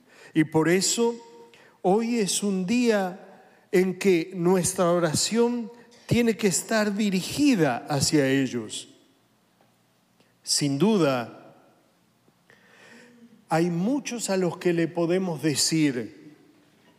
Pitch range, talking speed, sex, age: 170-230 Hz, 95 wpm, male, 50-69